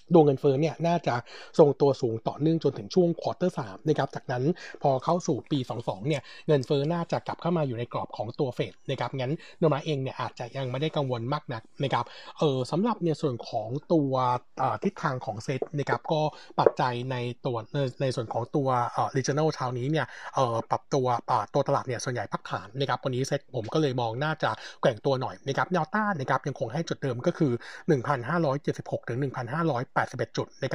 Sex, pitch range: male, 125-160 Hz